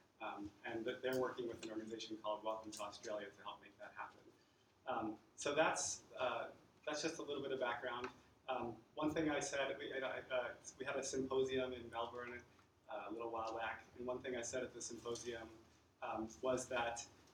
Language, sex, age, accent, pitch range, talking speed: English, male, 30-49, American, 115-130 Hz, 195 wpm